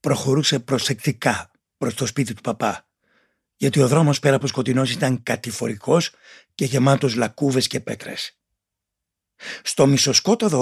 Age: 60-79